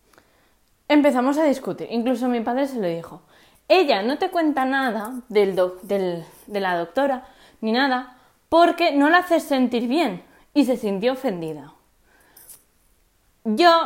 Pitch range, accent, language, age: 225-315 Hz, Spanish, Spanish, 20-39